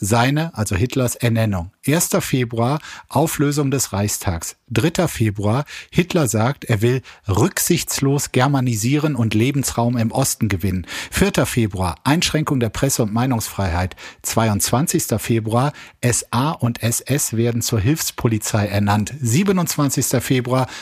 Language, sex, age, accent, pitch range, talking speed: German, male, 50-69, German, 110-135 Hz, 115 wpm